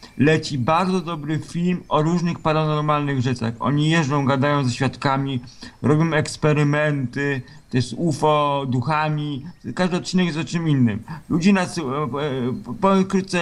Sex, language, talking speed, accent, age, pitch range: male, Polish, 125 wpm, native, 50-69, 140-165 Hz